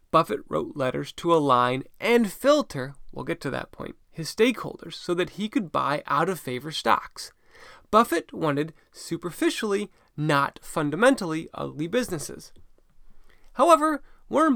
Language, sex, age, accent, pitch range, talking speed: English, male, 20-39, American, 160-250 Hz, 130 wpm